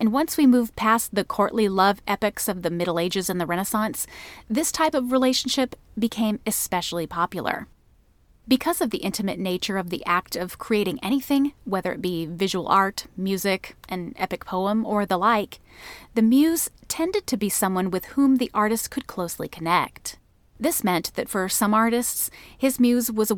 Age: 30-49